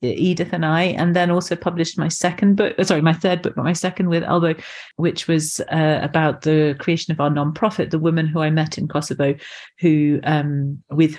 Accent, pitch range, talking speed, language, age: British, 145-170 Hz, 205 wpm, English, 40-59